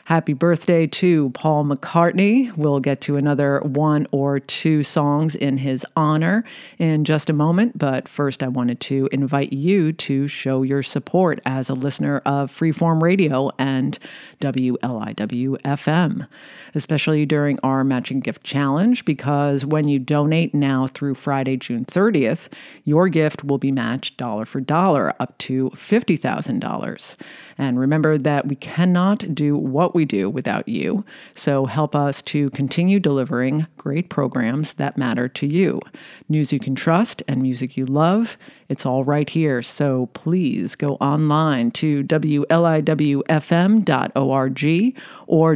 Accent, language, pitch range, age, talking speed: American, English, 135-165 Hz, 40-59, 140 wpm